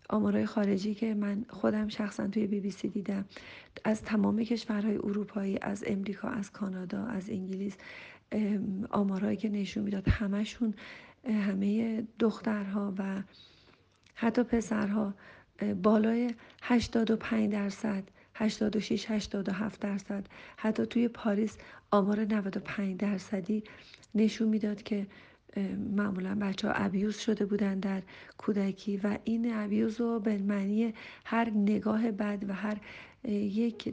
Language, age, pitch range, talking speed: Persian, 40-59, 200-220 Hz, 115 wpm